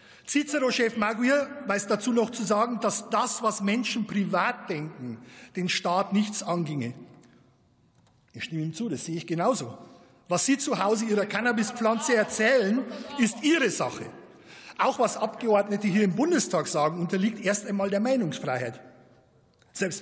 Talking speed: 145 wpm